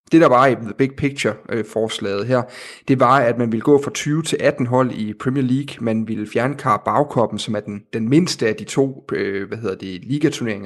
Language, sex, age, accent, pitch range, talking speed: Danish, male, 30-49, native, 115-135 Hz, 225 wpm